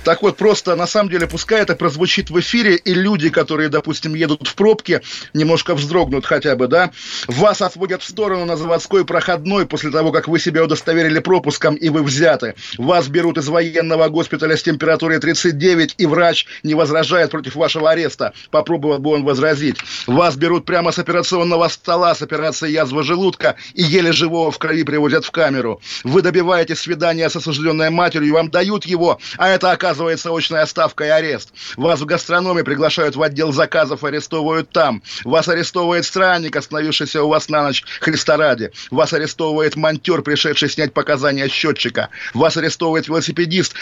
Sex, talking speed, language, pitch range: male, 170 wpm, Russian, 155-175 Hz